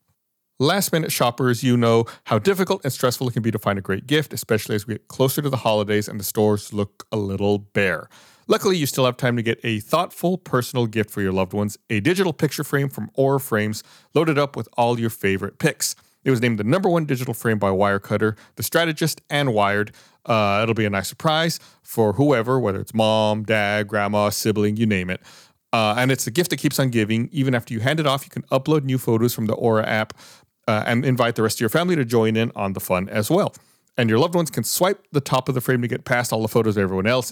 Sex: male